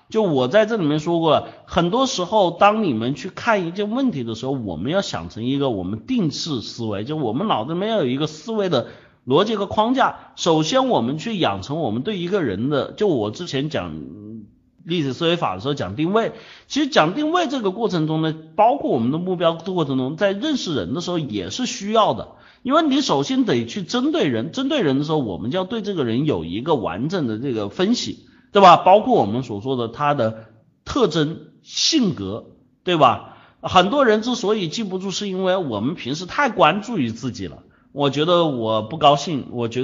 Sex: male